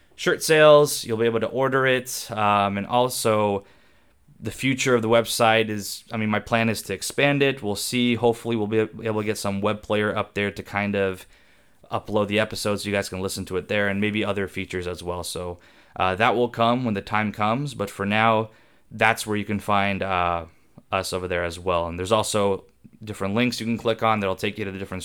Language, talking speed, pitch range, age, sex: English, 230 wpm, 95-115 Hz, 20-39, male